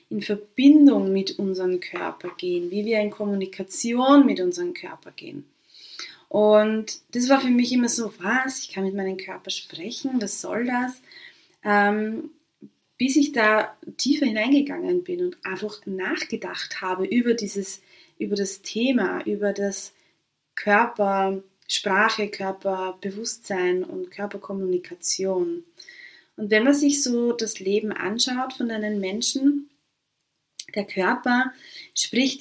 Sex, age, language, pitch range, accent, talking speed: female, 20-39, German, 195-280 Hz, German, 125 wpm